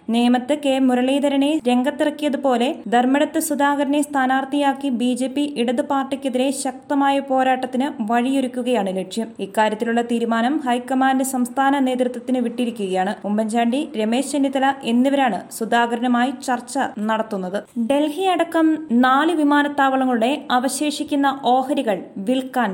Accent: native